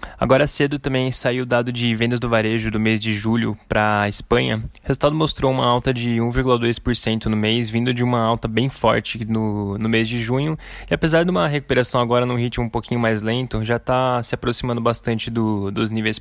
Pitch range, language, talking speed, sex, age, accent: 110-125 Hz, Portuguese, 205 wpm, male, 20-39, Brazilian